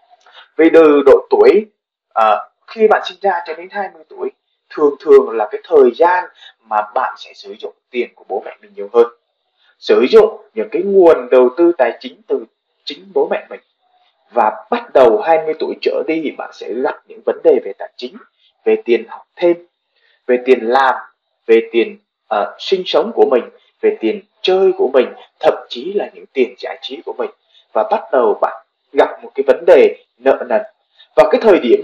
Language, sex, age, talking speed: Vietnamese, male, 20-39, 195 wpm